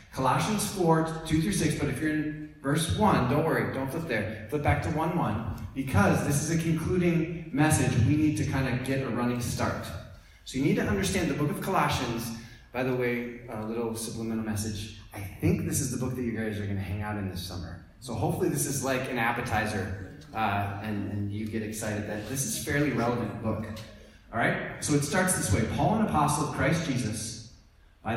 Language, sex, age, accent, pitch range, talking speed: English, male, 30-49, American, 100-135 Hz, 215 wpm